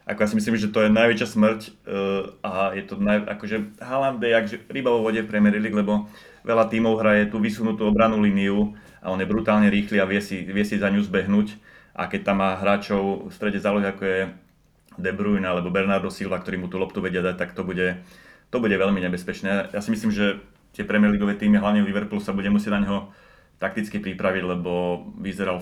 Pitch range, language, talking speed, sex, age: 95-105 Hz, Slovak, 210 wpm, male, 30-49